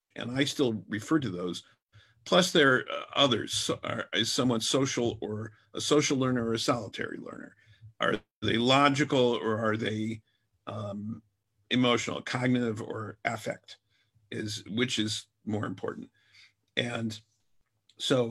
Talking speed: 135 wpm